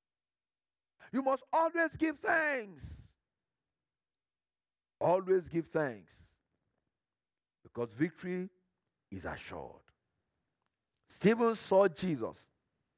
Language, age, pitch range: English, 50-69, 175-265 Hz